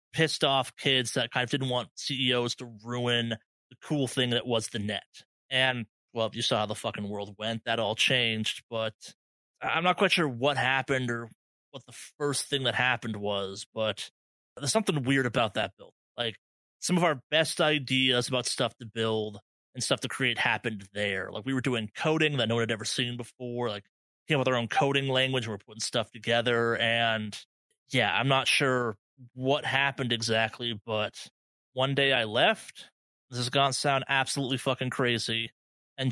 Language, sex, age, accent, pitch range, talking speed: English, male, 30-49, American, 115-140 Hz, 190 wpm